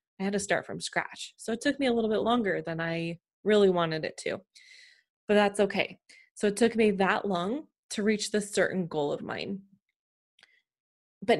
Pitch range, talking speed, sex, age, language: 180-230 Hz, 195 wpm, female, 20-39, English